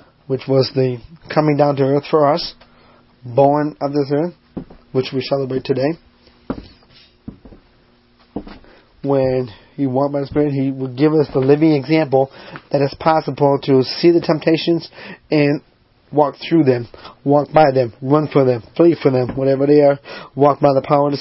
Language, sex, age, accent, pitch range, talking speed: English, male, 30-49, American, 135-155 Hz, 165 wpm